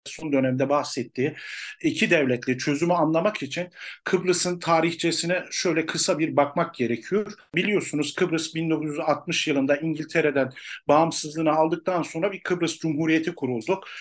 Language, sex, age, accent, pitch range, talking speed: Turkish, male, 50-69, native, 145-180 Hz, 115 wpm